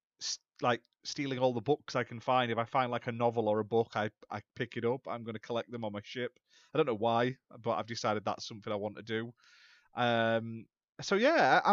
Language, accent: English, British